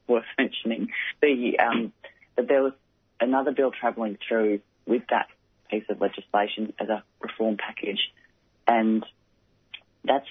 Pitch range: 105-120 Hz